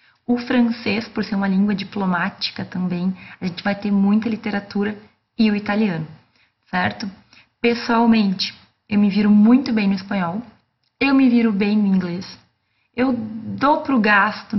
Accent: Brazilian